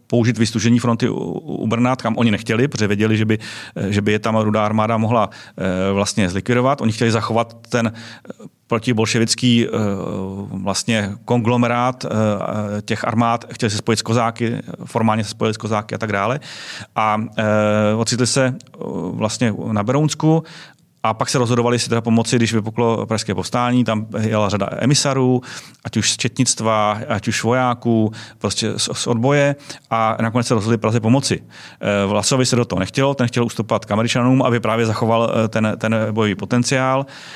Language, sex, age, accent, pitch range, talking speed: Czech, male, 30-49, native, 110-120 Hz, 155 wpm